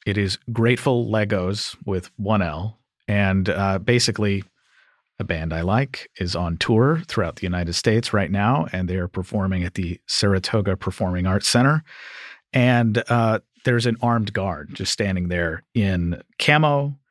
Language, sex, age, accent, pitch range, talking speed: English, male, 40-59, American, 95-120 Hz, 150 wpm